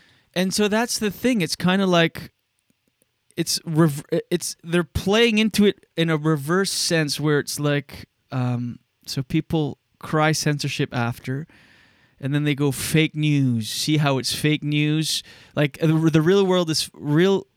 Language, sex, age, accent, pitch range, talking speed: English, male, 20-39, American, 135-160 Hz, 160 wpm